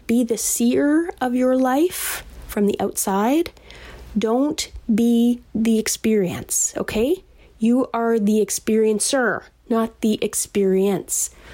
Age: 30-49